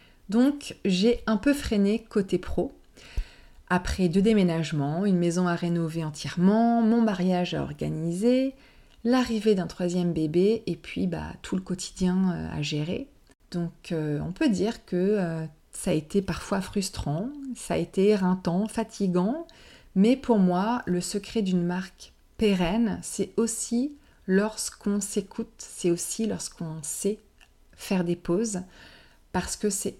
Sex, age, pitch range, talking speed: female, 30-49, 175-215 Hz, 140 wpm